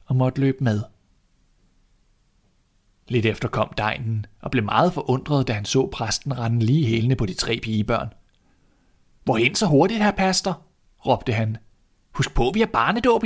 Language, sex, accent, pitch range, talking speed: Danish, male, native, 110-135 Hz, 160 wpm